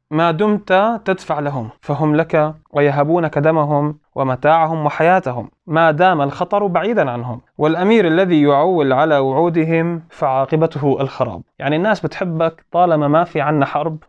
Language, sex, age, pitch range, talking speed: Arabic, male, 20-39, 135-170 Hz, 130 wpm